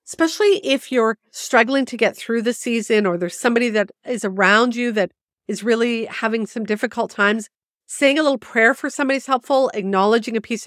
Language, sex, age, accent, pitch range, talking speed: English, female, 50-69, American, 210-255 Hz, 190 wpm